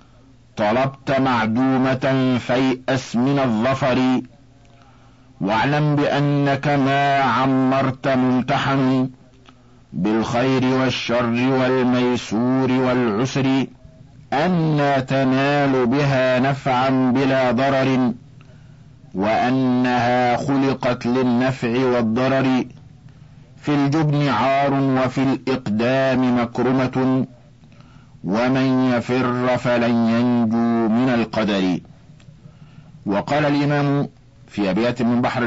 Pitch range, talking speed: 120-135 Hz, 70 wpm